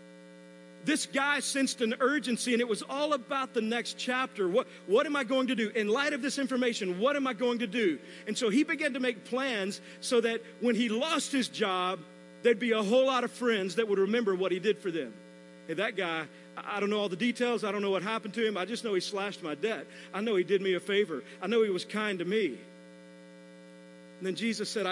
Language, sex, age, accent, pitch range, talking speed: English, male, 50-69, American, 170-240 Hz, 245 wpm